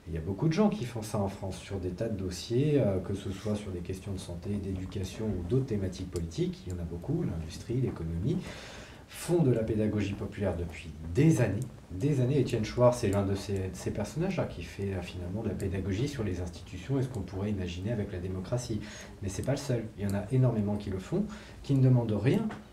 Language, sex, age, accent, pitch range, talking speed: French, male, 40-59, French, 95-125 Hz, 230 wpm